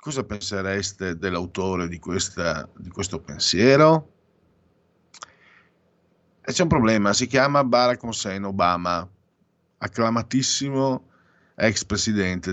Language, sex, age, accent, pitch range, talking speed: Italian, male, 50-69, native, 90-110 Hz, 95 wpm